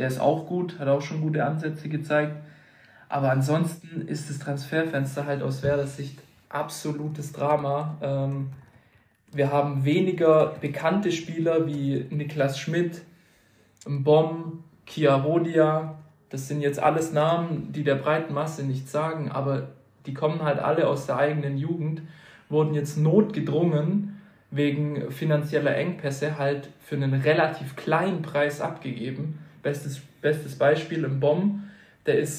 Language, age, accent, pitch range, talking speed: German, 20-39, German, 140-155 Hz, 135 wpm